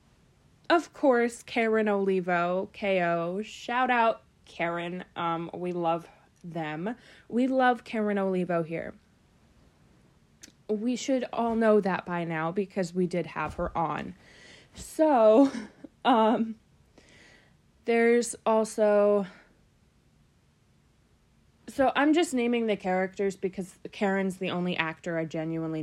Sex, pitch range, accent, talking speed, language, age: female, 170-225 Hz, American, 110 wpm, English, 20-39